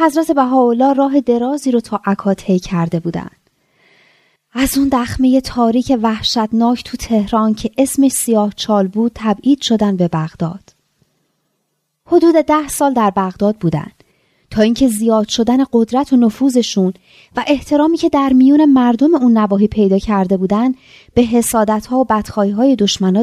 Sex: female